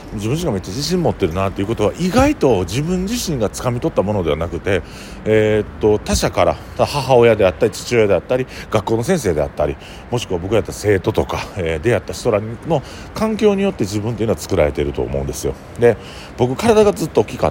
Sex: male